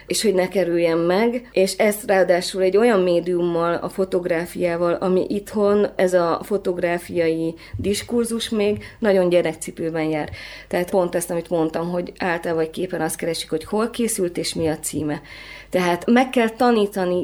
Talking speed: 155 wpm